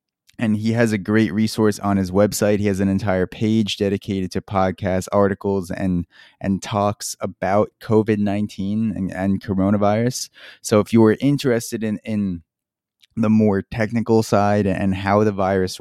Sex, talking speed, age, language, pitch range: male, 155 wpm, 20-39, English, 95-110 Hz